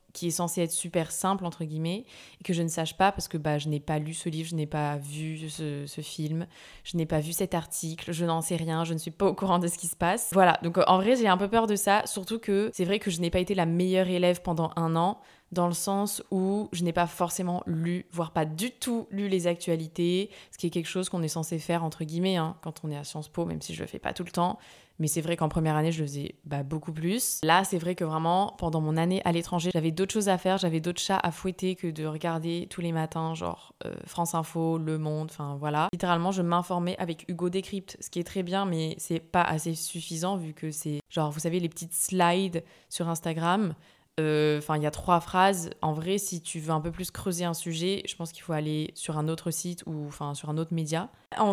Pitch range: 165-185 Hz